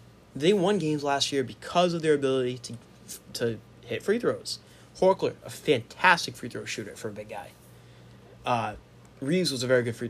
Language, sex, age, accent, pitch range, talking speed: English, male, 20-39, American, 115-145 Hz, 185 wpm